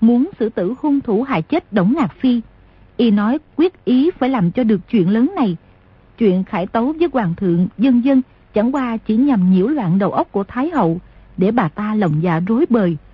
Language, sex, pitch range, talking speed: Vietnamese, female, 195-265 Hz, 215 wpm